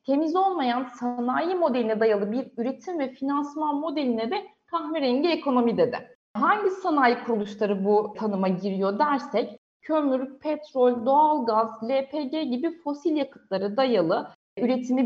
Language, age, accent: Turkish, 30-49, native